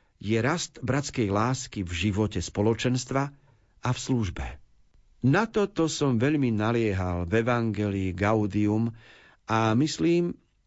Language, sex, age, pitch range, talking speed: Slovak, male, 50-69, 105-140 Hz, 110 wpm